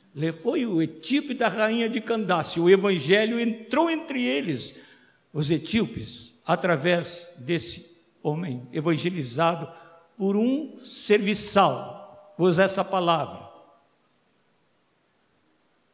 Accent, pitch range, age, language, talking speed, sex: Brazilian, 170-235 Hz, 60-79, Portuguese, 90 wpm, male